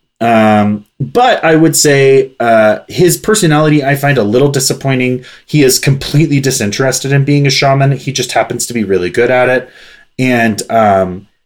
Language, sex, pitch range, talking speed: English, male, 110-145 Hz, 170 wpm